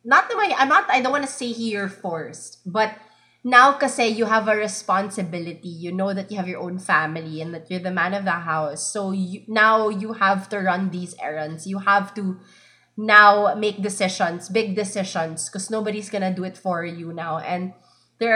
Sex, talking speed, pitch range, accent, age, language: female, 205 wpm, 180-225 Hz, Filipino, 20-39, English